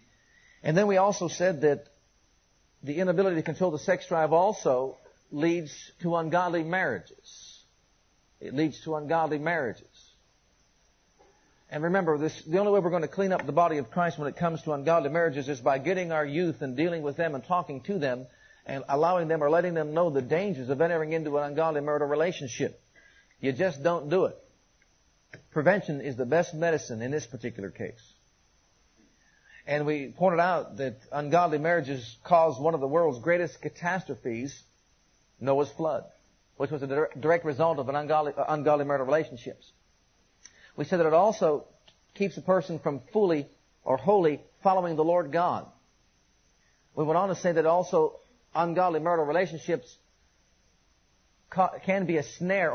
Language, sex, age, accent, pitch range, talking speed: English, male, 50-69, American, 145-180 Hz, 165 wpm